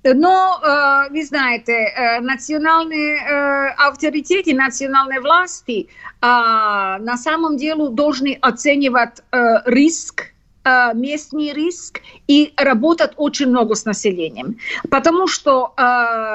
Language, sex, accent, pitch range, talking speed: Russian, female, native, 245-325 Hz, 85 wpm